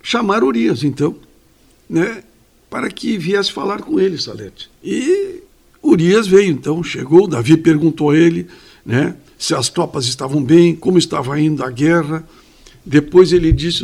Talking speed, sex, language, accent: 145 wpm, male, Portuguese, Brazilian